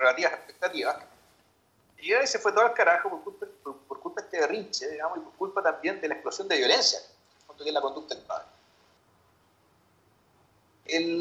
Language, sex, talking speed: Spanish, male, 175 wpm